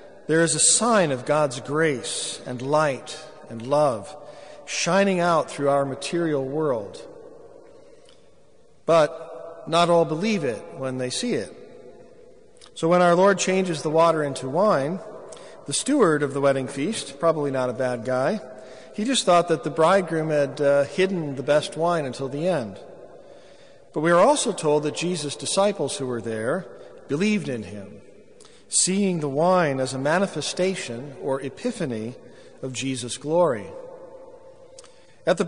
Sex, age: male, 50-69